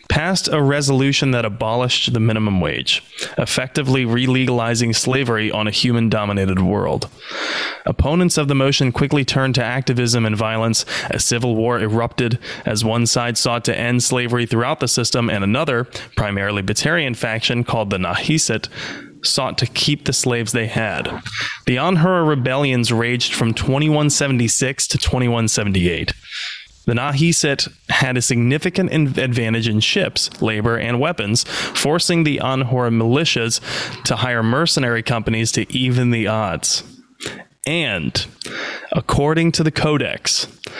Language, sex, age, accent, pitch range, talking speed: English, male, 20-39, American, 115-140 Hz, 130 wpm